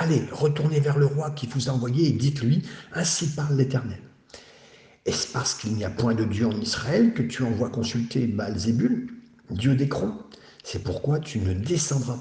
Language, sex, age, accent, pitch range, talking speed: French, male, 60-79, French, 100-140 Hz, 185 wpm